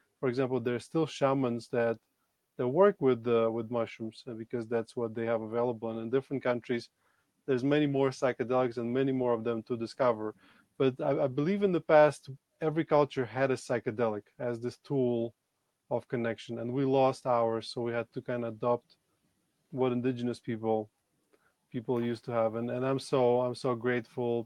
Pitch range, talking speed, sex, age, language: 115-135 Hz, 185 wpm, male, 20-39, English